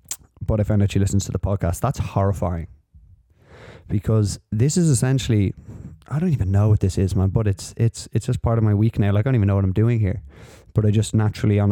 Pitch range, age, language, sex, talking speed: 100-120 Hz, 20-39, English, male, 235 wpm